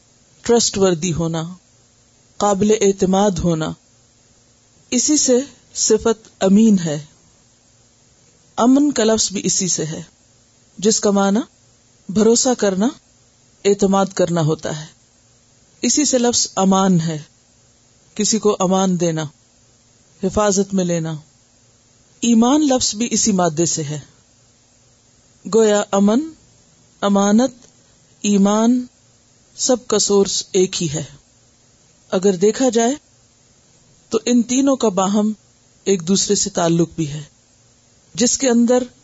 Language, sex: Urdu, female